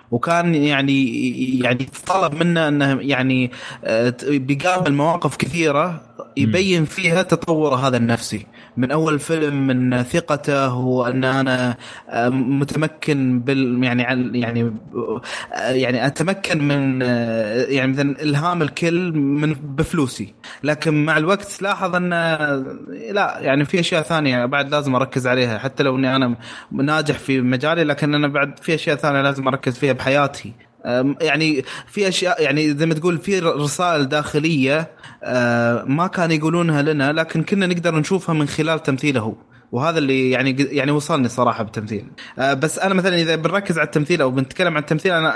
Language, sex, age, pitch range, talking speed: Arabic, male, 20-39, 130-160 Hz, 145 wpm